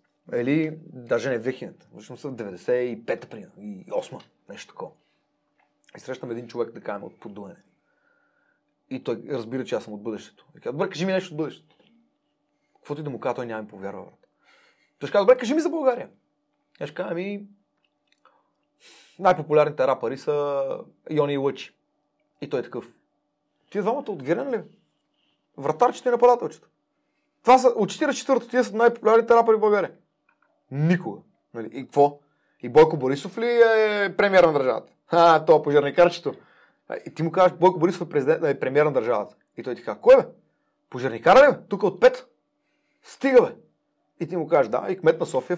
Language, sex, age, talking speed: Bulgarian, male, 30-49, 170 wpm